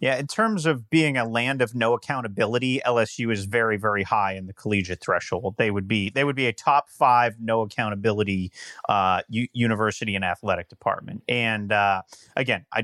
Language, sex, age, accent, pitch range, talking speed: English, male, 30-49, American, 110-145 Hz, 185 wpm